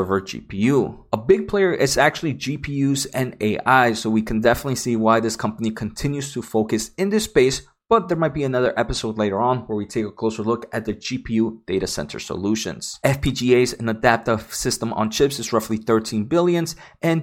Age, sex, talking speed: 30-49, male, 185 wpm